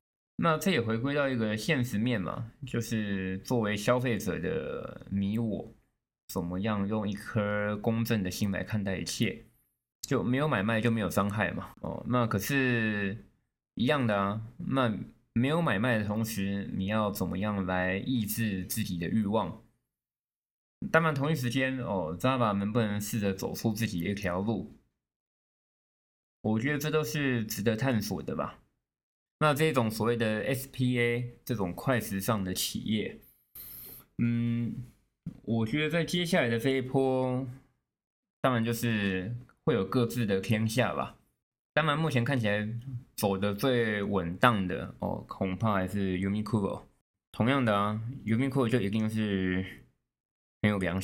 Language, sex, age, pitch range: Chinese, male, 20-39, 100-125 Hz